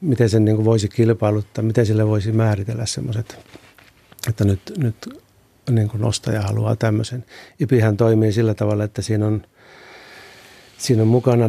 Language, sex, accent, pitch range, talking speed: Finnish, male, native, 105-120 Hz, 140 wpm